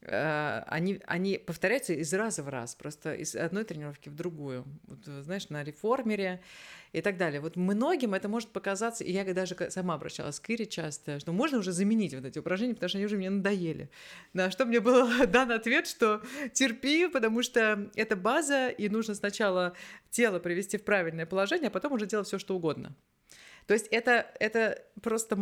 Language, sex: Russian, female